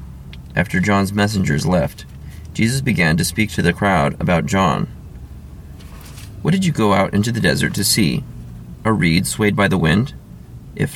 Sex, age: male, 30-49